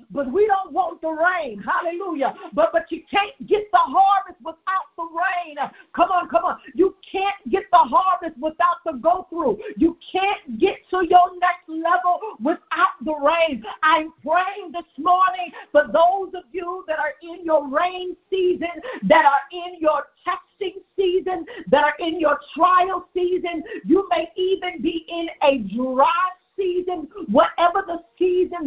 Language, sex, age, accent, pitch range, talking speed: English, female, 50-69, American, 310-370 Hz, 160 wpm